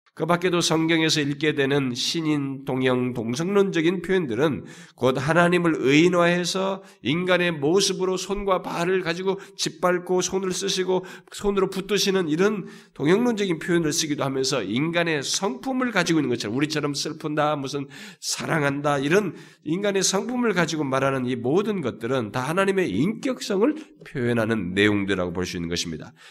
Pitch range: 135-185 Hz